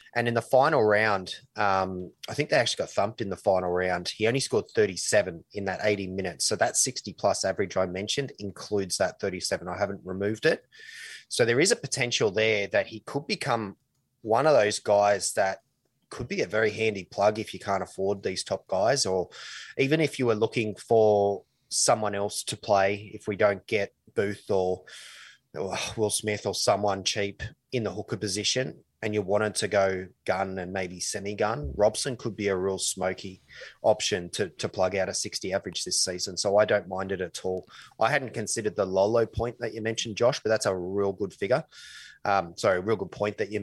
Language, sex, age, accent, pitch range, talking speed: English, male, 20-39, Australian, 95-110 Hz, 205 wpm